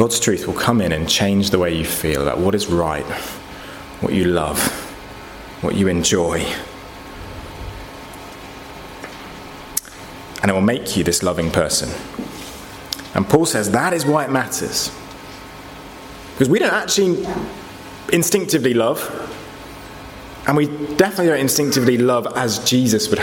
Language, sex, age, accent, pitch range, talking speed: English, male, 30-49, British, 100-145 Hz, 135 wpm